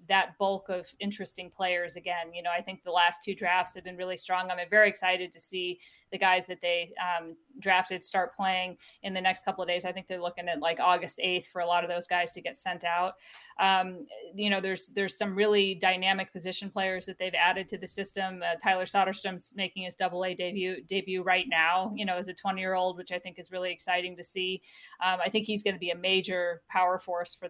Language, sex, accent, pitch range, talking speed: English, female, American, 180-205 Hz, 235 wpm